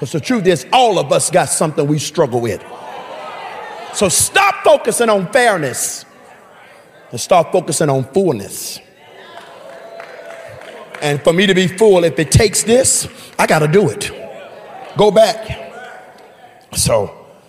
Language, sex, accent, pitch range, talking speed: English, male, American, 140-220 Hz, 135 wpm